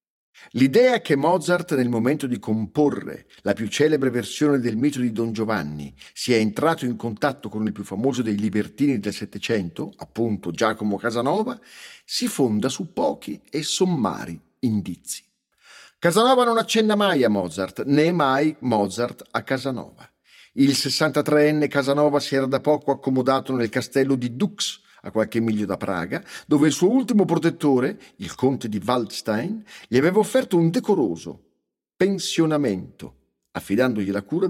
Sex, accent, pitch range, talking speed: male, native, 115-170 Hz, 145 wpm